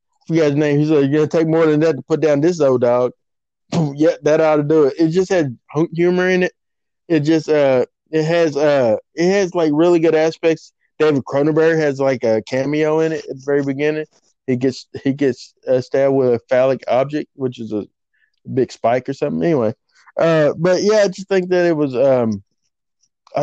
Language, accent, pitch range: English, American, 130-160 Hz